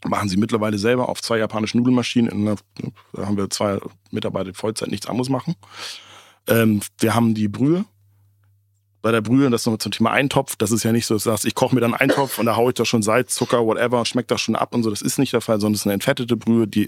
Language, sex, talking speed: German, male, 260 wpm